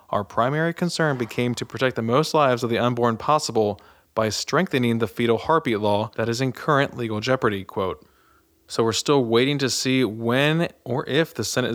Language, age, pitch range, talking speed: English, 20-39, 115-145 Hz, 190 wpm